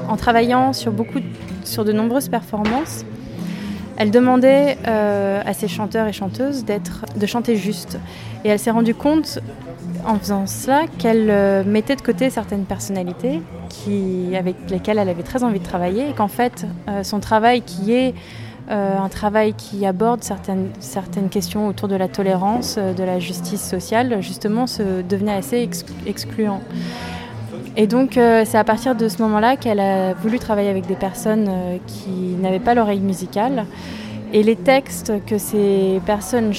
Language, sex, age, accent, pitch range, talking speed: French, female, 20-39, French, 190-225 Hz, 165 wpm